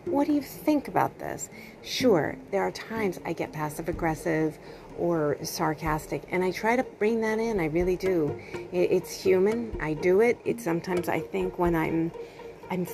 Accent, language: American, English